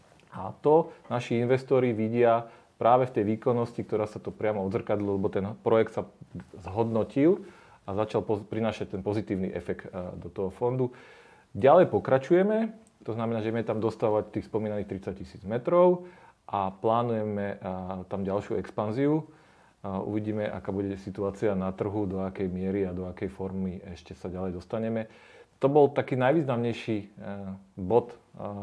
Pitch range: 100-120 Hz